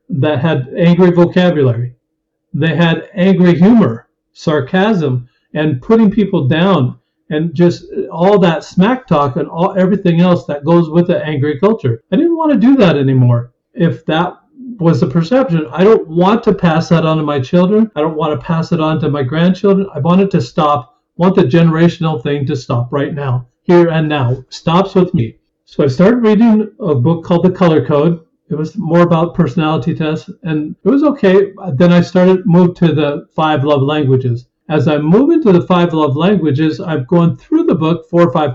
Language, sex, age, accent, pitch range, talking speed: English, male, 50-69, American, 150-185 Hz, 200 wpm